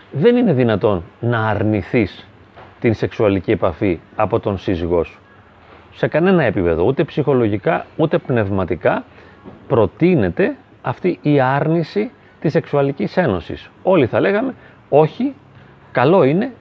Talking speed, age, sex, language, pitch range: 115 wpm, 30-49, male, Greek, 110-150 Hz